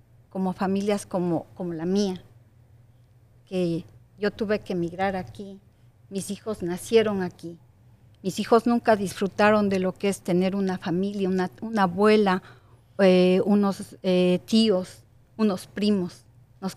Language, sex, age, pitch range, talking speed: Spanish, female, 40-59, 140-205 Hz, 130 wpm